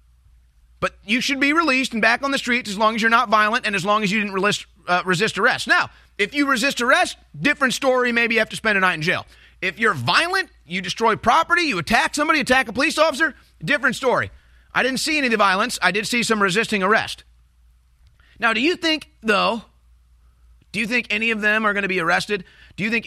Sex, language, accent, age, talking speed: male, English, American, 30-49, 225 wpm